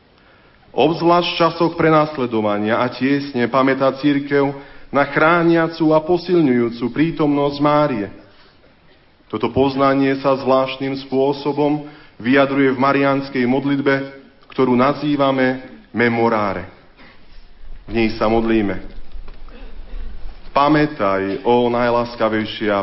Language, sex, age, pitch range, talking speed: Slovak, male, 40-59, 115-155 Hz, 85 wpm